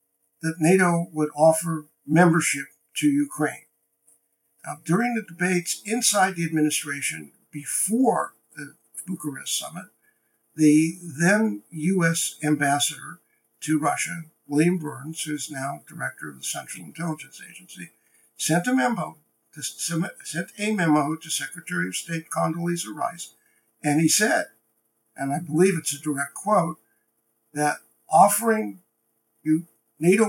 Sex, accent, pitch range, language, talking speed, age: male, American, 115-170 Hz, English, 125 wpm, 60-79